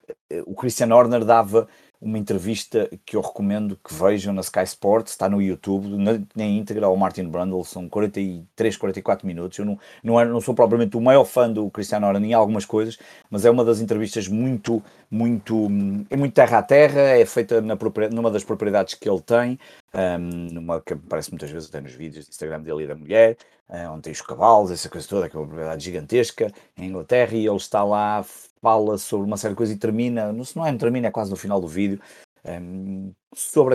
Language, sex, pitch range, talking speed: Portuguese, male, 95-115 Hz, 215 wpm